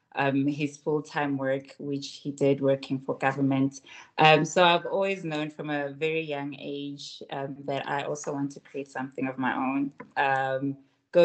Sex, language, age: female, English, 20-39